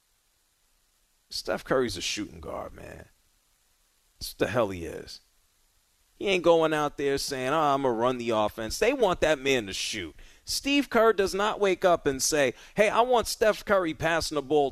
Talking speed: 190 wpm